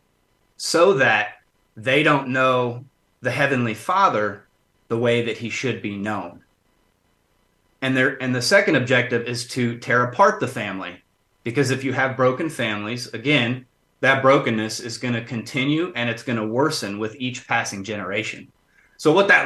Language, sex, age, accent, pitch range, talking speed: English, male, 30-49, American, 120-140 Hz, 160 wpm